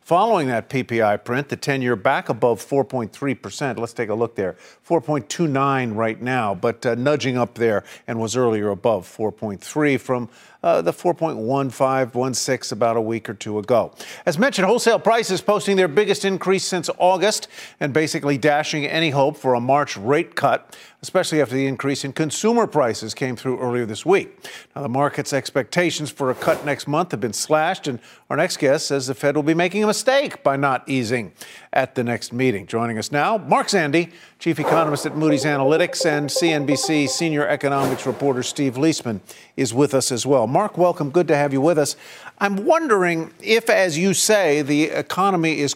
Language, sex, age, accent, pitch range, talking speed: English, male, 50-69, American, 130-175 Hz, 185 wpm